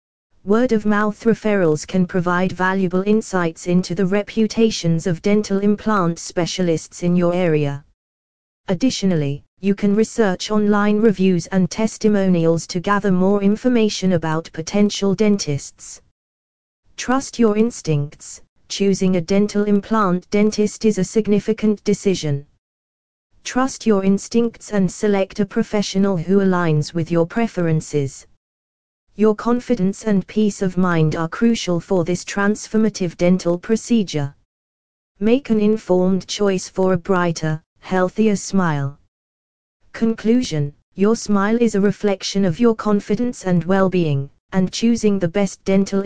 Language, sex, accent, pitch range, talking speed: English, female, British, 170-210 Hz, 125 wpm